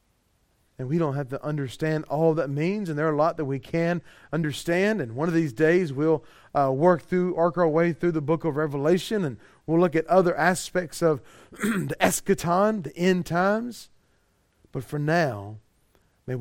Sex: male